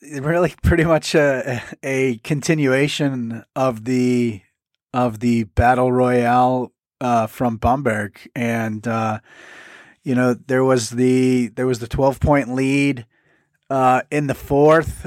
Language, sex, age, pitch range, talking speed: English, male, 30-49, 125-145 Hz, 125 wpm